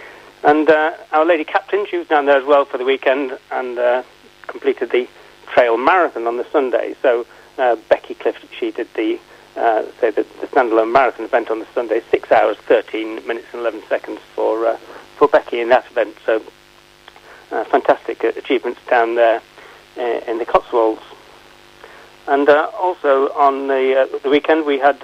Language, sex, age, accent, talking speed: English, male, 40-59, British, 175 wpm